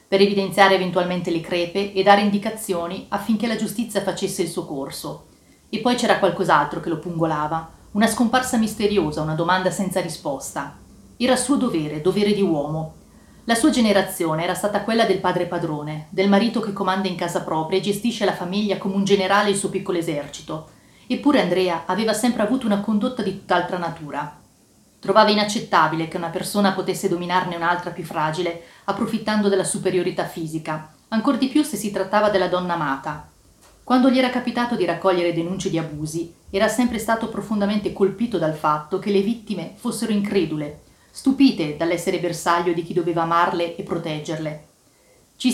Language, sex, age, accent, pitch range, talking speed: Italian, female, 30-49, native, 170-210 Hz, 165 wpm